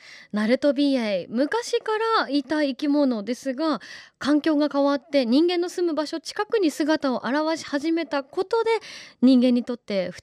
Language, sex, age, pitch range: Japanese, female, 20-39, 200-305 Hz